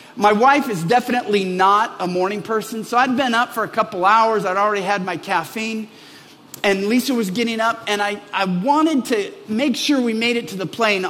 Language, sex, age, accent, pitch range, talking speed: English, male, 50-69, American, 210-265 Hz, 210 wpm